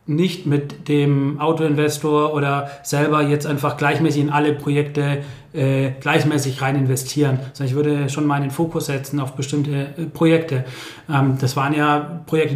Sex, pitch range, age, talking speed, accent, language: male, 145-160 Hz, 30-49, 160 wpm, German, German